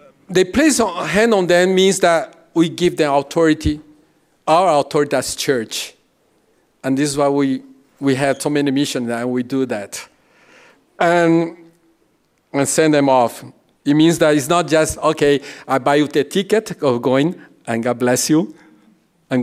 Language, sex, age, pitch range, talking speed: English, male, 50-69, 125-155 Hz, 165 wpm